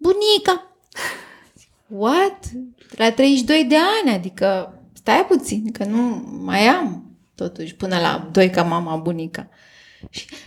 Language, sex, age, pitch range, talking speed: Romanian, female, 20-39, 235-395 Hz, 115 wpm